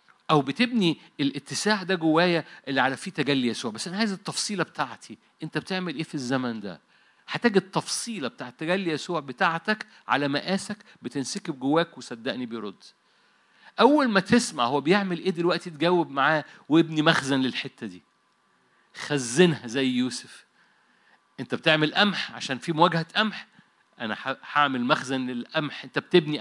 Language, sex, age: Arabic, male, 50-69